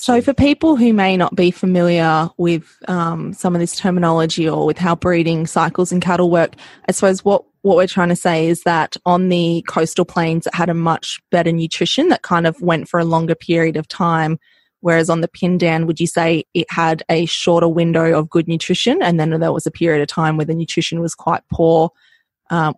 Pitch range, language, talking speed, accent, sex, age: 160-180 Hz, English, 215 wpm, Australian, female, 20-39